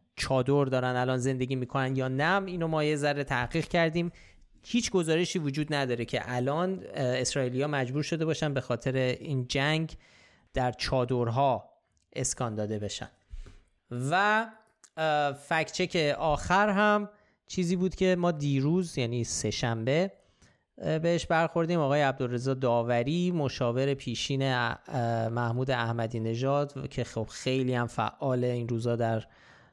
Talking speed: 125 wpm